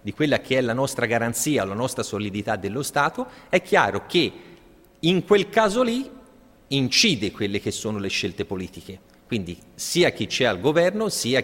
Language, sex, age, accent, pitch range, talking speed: Italian, male, 30-49, native, 105-150 Hz, 175 wpm